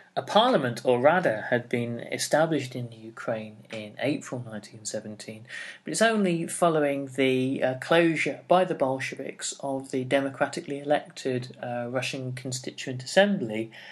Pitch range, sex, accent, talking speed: 120-150 Hz, male, British, 115 wpm